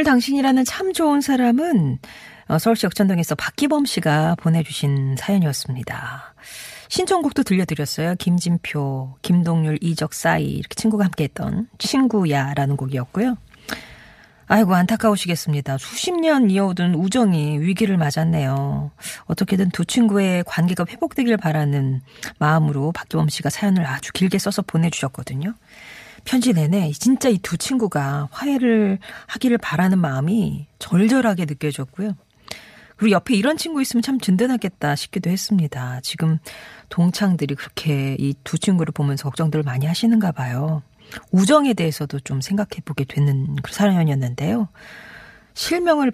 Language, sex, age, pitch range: Korean, female, 40-59, 145-210 Hz